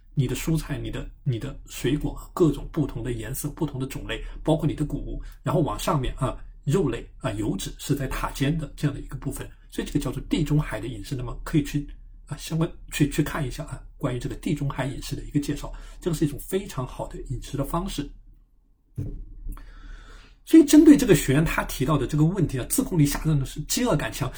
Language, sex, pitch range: Chinese, male, 130-155 Hz